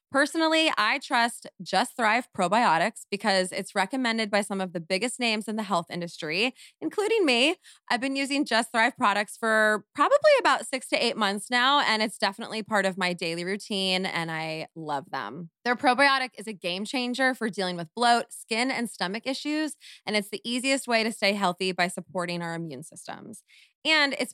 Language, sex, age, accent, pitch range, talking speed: English, female, 20-39, American, 190-265 Hz, 185 wpm